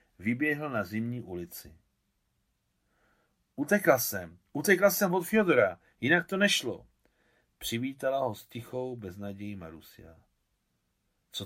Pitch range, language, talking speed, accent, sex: 100-130 Hz, Czech, 105 wpm, native, male